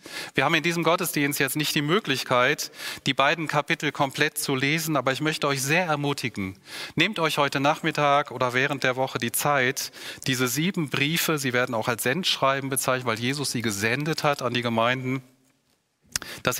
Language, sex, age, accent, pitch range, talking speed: German, male, 30-49, German, 120-150 Hz, 175 wpm